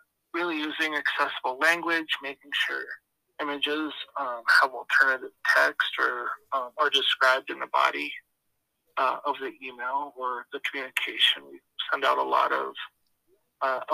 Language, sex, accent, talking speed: English, male, American, 140 wpm